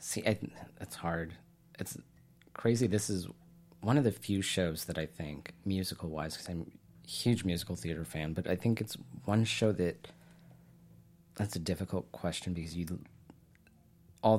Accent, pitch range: American, 85-125 Hz